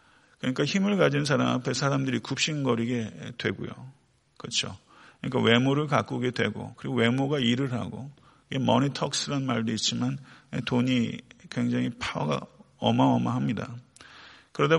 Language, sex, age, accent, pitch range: Korean, male, 40-59, native, 115-135 Hz